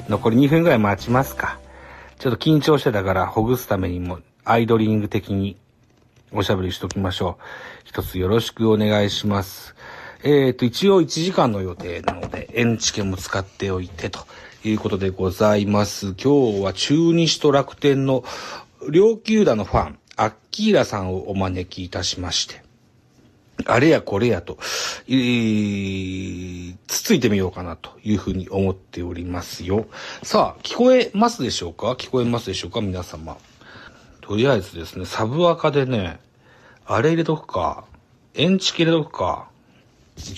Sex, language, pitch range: male, Japanese, 95-125 Hz